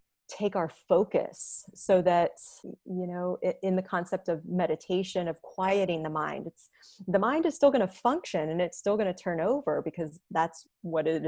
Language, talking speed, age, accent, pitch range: English, 185 wpm, 30-49, American, 165-195 Hz